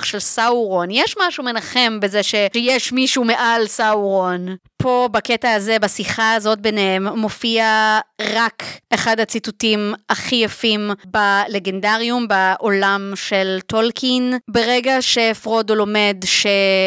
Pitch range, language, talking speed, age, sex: 195-235 Hz, Hebrew, 105 wpm, 20-39, female